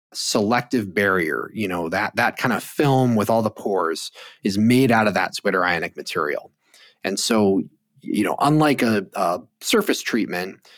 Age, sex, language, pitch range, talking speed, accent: 30-49, male, English, 100-150 Hz, 160 wpm, American